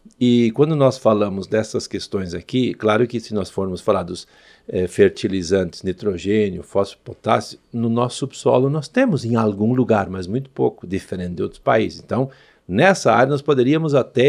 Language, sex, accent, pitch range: Portuguese, male, Brazilian, 105-145 Hz